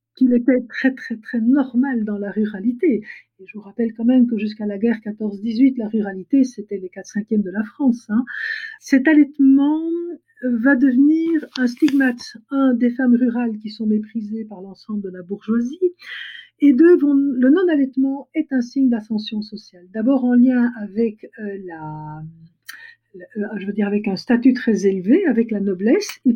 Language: French